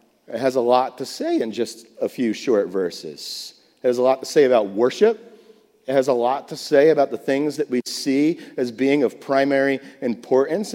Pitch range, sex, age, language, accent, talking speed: 125-180 Hz, male, 40-59, English, American, 205 wpm